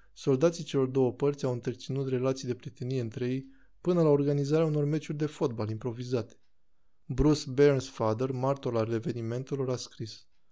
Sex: male